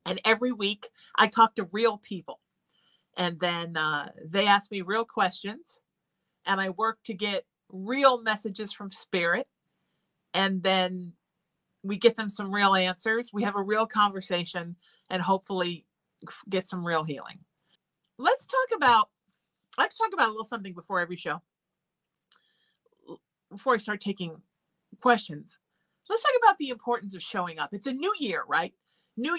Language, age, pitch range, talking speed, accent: English, 40-59, 180-240 Hz, 155 wpm, American